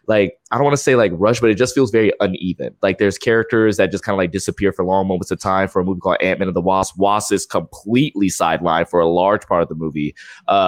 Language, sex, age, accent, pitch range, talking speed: English, male, 20-39, American, 95-120 Hz, 270 wpm